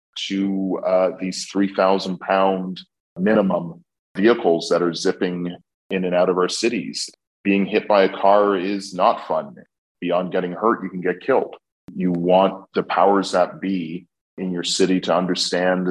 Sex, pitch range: male, 85-95 Hz